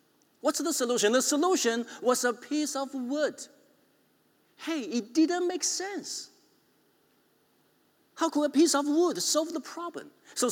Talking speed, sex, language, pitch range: 145 wpm, male, English, 205-335 Hz